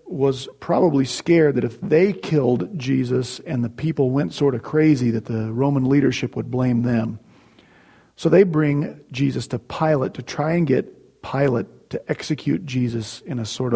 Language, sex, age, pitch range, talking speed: English, male, 40-59, 120-160 Hz, 170 wpm